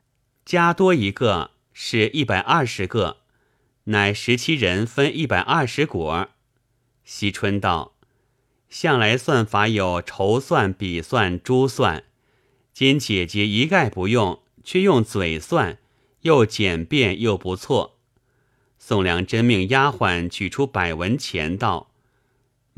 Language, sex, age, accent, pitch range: Chinese, male, 30-49, native, 105-130 Hz